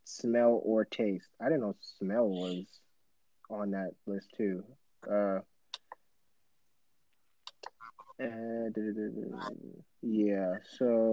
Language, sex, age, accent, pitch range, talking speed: English, male, 20-39, American, 105-130 Hz, 80 wpm